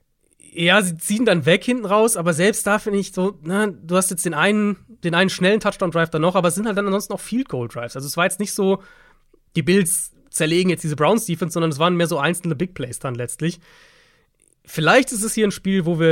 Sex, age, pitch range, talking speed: male, 30-49, 145-185 Hz, 235 wpm